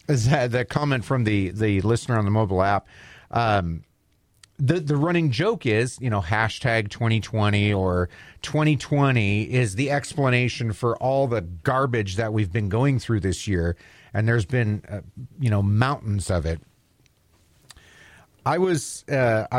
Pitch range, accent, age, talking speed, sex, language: 100-130 Hz, American, 40-59, 145 wpm, male, English